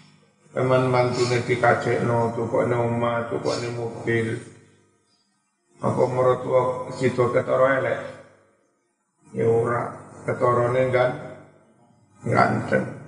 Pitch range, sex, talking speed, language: 120-130 Hz, male, 90 wpm, Indonesian